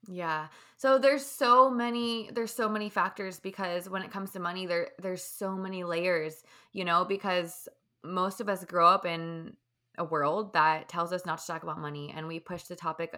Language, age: English, 20-39